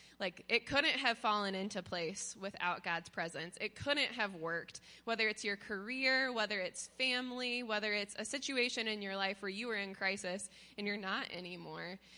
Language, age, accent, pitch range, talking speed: English, 20-39, American, 180-225 Hz, 180 wpm